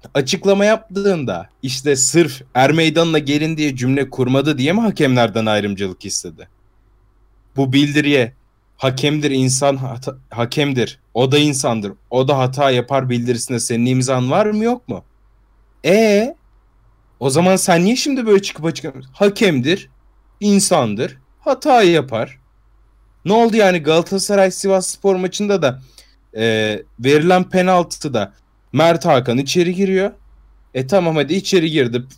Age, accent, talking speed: 30-49, native, 125 wpm